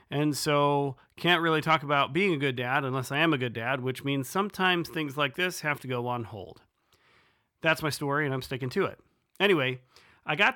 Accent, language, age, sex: American, English, 40-59, male